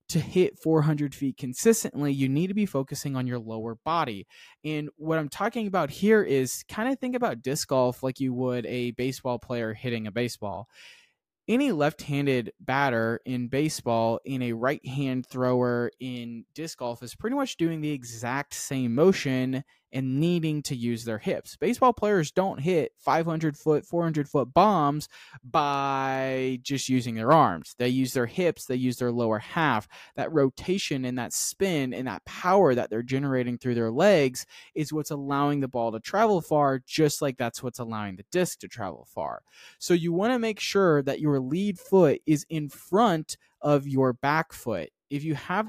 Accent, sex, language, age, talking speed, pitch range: American, male, English, 20-39, 185 wpm, 125-165 Hz